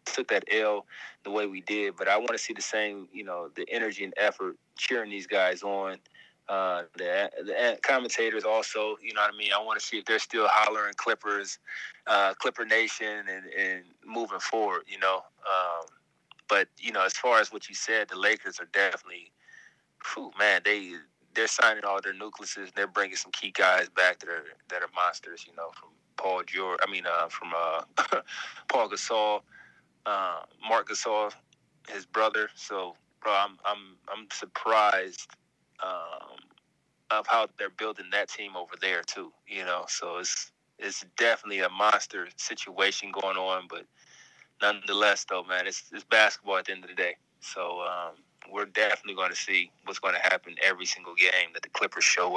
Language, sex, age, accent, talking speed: English, male, 20-39, American, 185 wpm